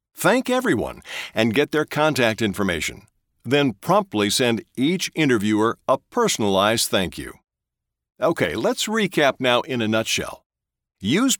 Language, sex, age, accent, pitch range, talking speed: English, male, 50-69, American, 130-210 Hz, 125 wpm